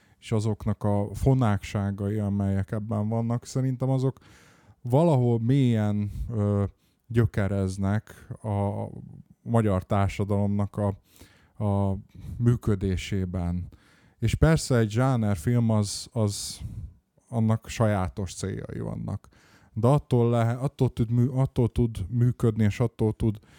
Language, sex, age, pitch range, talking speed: Hungarian, male, 20-39, 100-120 Hz, 95 wpm